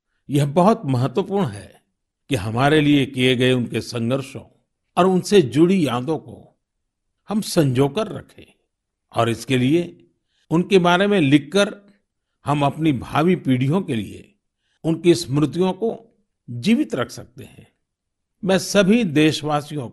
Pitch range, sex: 125-180 Hz, male